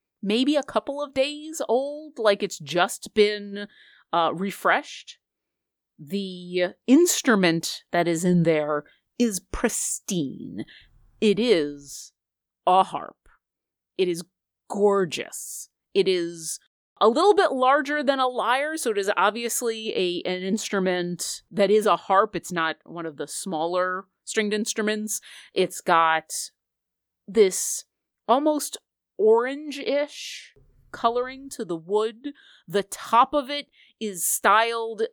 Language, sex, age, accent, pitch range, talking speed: English, female, 30-49, American, 175-250 Hz, 120 wpm